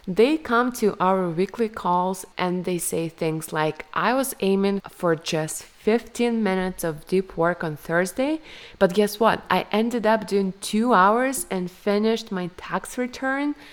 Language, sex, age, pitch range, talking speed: English, female, 20-39, 175-220 Hz, 160 wpm